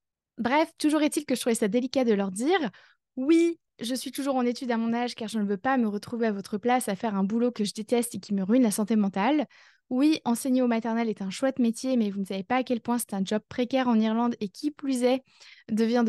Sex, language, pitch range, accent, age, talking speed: female, French, 225-270 Hz, French, 20-39, 265 wpm